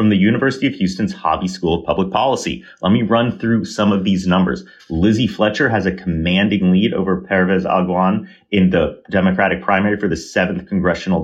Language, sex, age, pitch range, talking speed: English, male, 30-49, 95-115 Hz, 185 wpm